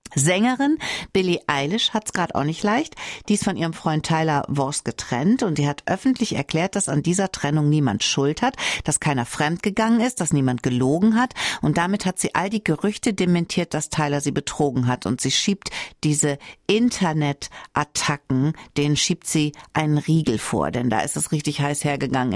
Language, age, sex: German, 60-79, female